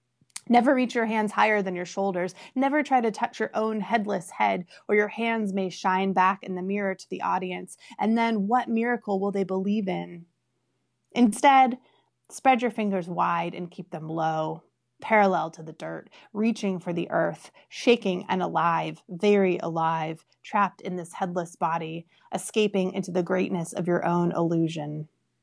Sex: female